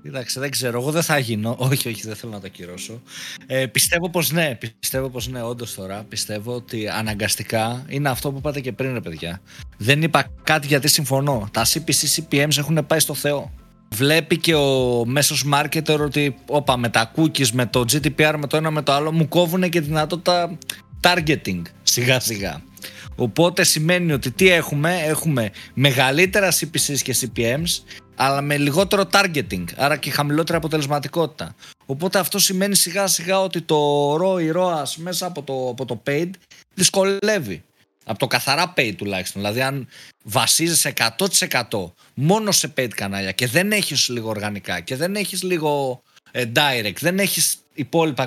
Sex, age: male, 20-39